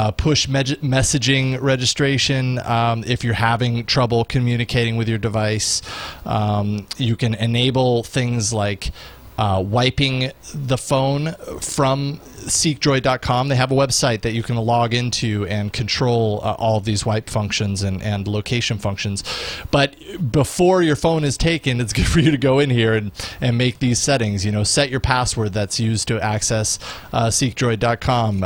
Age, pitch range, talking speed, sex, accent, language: 30-49, 110-135 Hz, 160 wpm, male, American, English